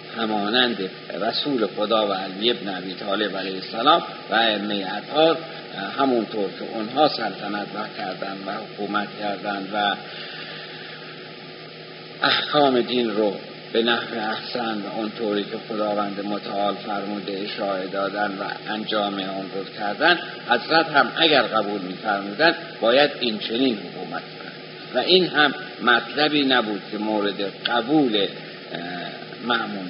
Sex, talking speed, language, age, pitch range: male, 120 wpm, Persian, 50-69, 100-130 Hz